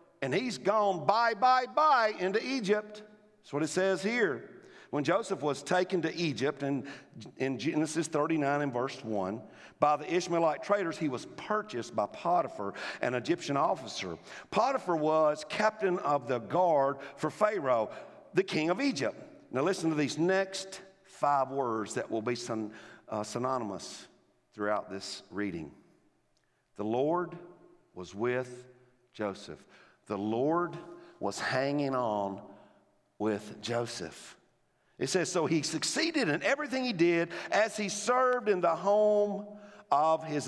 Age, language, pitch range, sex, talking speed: 50-69, English, 150-235 Hz, male, 140 wpm